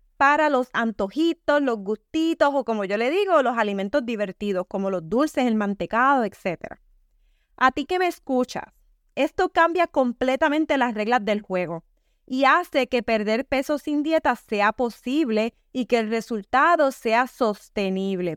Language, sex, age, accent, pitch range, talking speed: English, female, 20-39, American, 225-300 Hz, 150 wpm